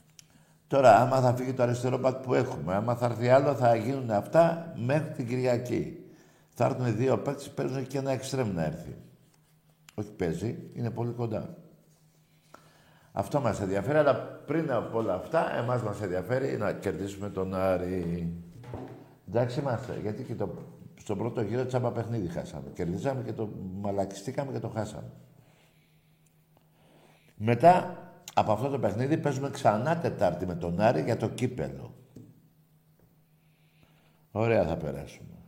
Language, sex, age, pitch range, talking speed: Greek, male, 60-79, 110-155 Hz, 140 wpm